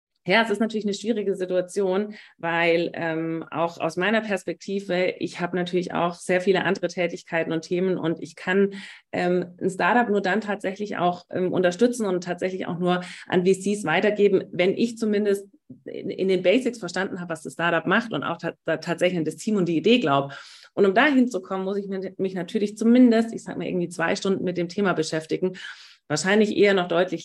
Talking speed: 200 wpm